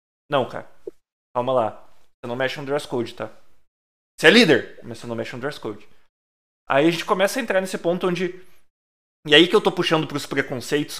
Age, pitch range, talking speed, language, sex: 20-39, 120-185 Hz, 215 wpm, Portuguese, male